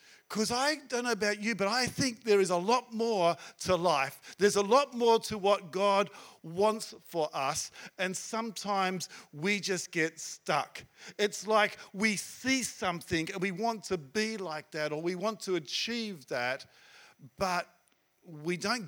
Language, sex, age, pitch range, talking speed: English, male, 50-69, 175-225 Hz, 170 wpm